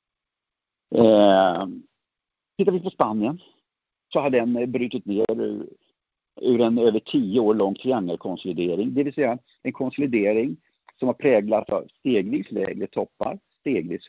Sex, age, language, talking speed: male, 50-69, Swedish, 130 wpm